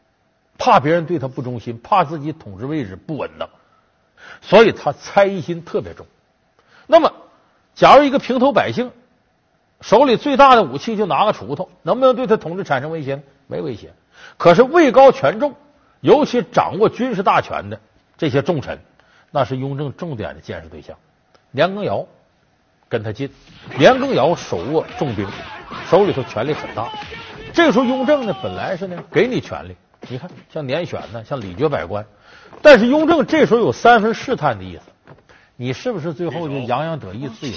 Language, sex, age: Chinese, male, 50-69